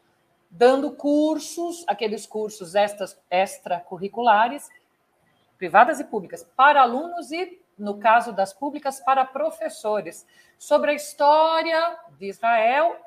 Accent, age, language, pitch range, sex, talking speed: Brazilian, 50-69, Portuguese, 205-295 Hz, female, 100 wpm